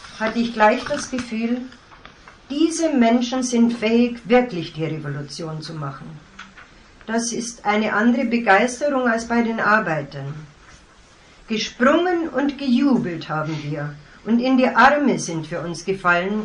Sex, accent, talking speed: female, German, 130 wpm